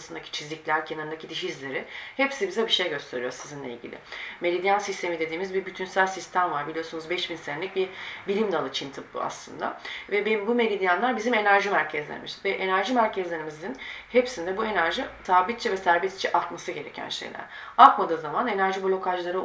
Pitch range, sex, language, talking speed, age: 160-210 Hz, female, Turkish, 150 wpm, 30-49